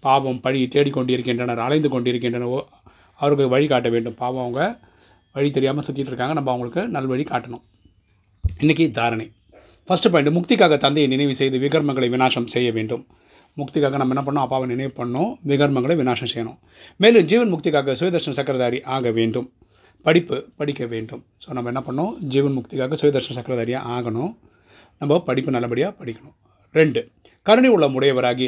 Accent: native